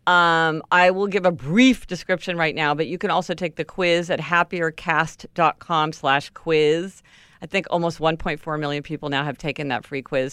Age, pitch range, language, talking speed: 50-69, 145-175 Hz, English, 180 wpm